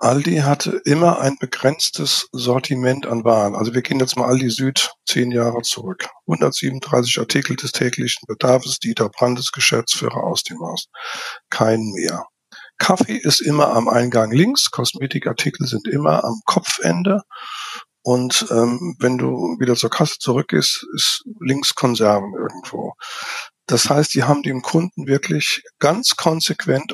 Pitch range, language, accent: 125-175 Hz, German, German